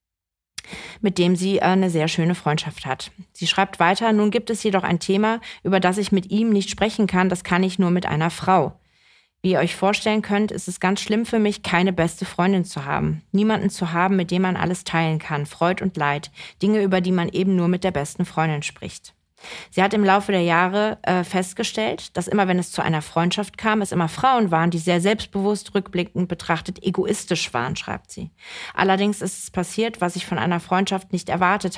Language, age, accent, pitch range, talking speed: German, 30-49, German, 165-195 Hz, 210 wpm